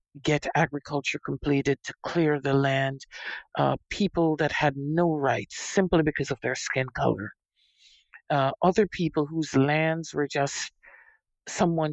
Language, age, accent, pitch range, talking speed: English, 50-69, American, 140-180 Hz, 135 wpm